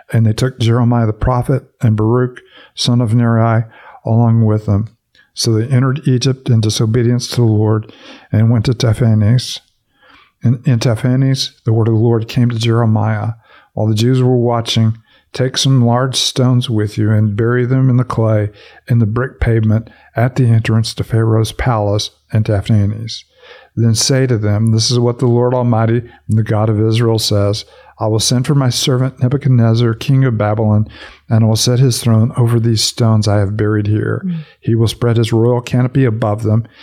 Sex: male